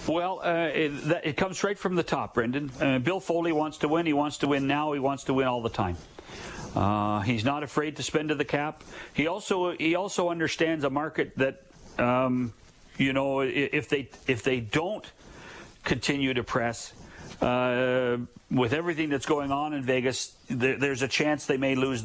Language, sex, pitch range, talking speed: English, male, 120-150 Hz, 195 wpm